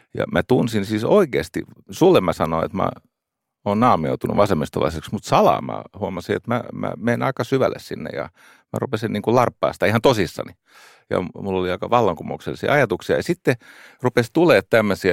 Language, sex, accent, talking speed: Finnish, male, native, 165 wpm